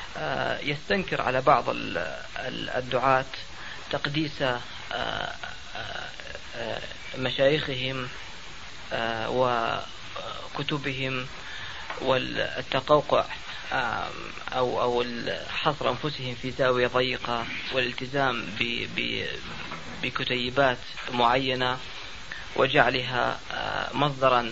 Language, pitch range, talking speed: Arabic, 125-135 Hz, 45 wpm